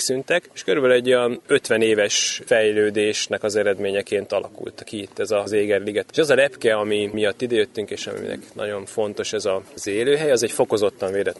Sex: male